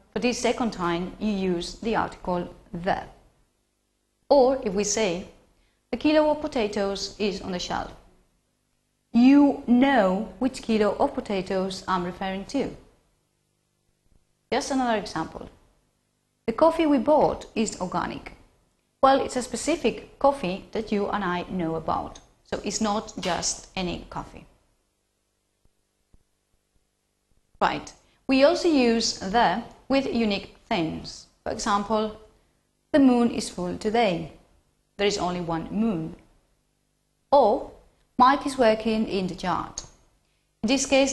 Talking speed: 125 wpm